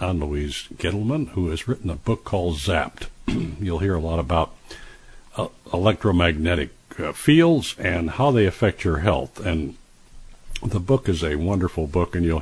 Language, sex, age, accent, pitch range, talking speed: English, male, 60-79, American, 80-105 Hz, 165 wpm